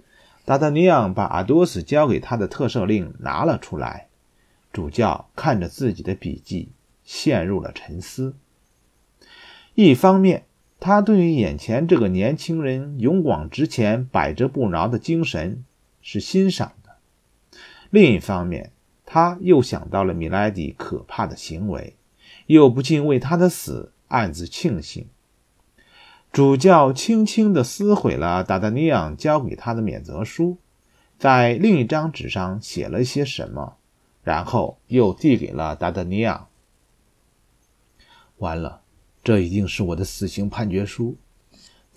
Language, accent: Chinese, native